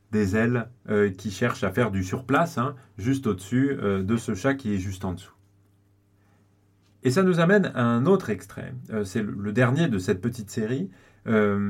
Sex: male